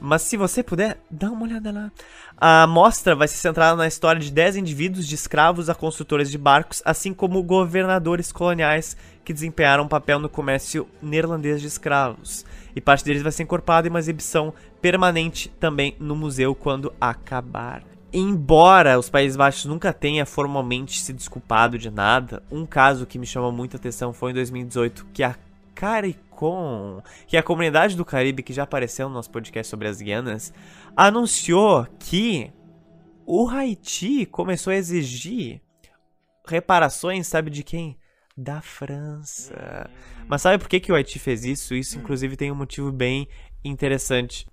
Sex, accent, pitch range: male, Brazilian, 130-170 Hz